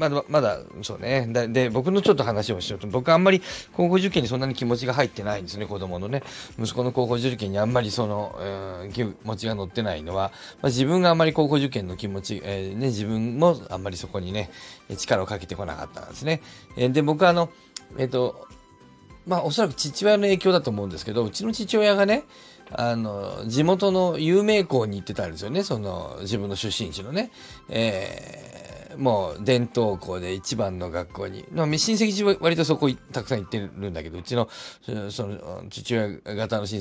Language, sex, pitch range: Japanese, male, 100-155 Hz